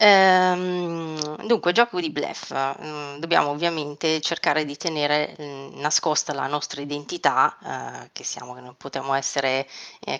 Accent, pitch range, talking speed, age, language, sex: native, 140-165 Hz, 120 wpm, 30-49, Italian, female